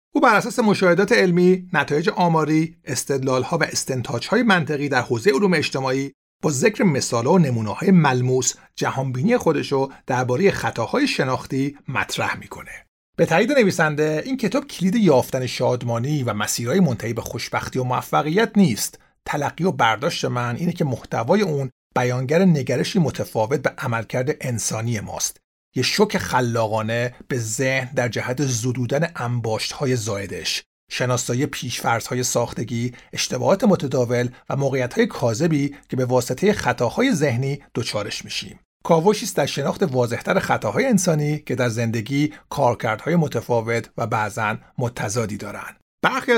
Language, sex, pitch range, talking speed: Persian, male, 120-170 Hz, 130 wpm